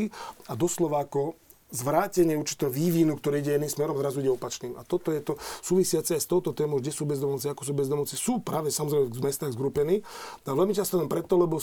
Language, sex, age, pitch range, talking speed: Slovak, male, 40-59, 135-165 Hz, 195 wpm